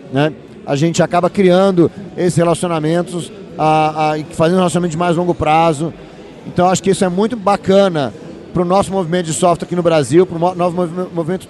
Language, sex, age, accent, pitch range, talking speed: Portuguese, male, 40-59, Brazilian, 165-185 Hz, 185 wpm